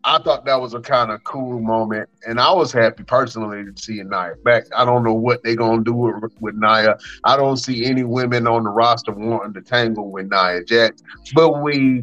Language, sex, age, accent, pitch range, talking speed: English, male, 30-49, American, 115-170 Hz, 225 wpm